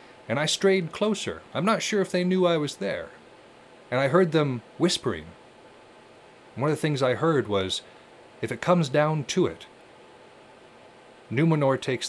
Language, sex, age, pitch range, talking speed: English, male, 30-49, 110-150 Hz, 170 wpm